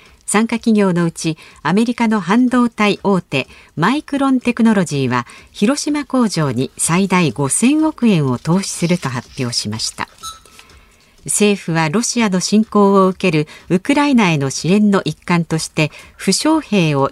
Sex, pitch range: female, 155-235 Hz